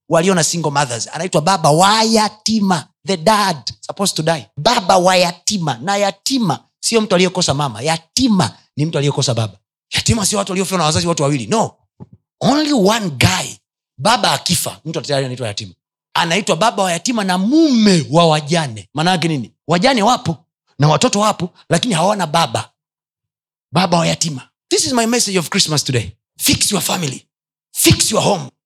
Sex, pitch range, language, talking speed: male, 165-235 Hz, Swahili, 155 wpm